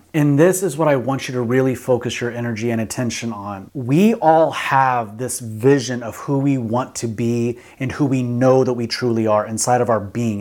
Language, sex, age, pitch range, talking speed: English, male, 30-49, 120-145 Hz, 220 wpm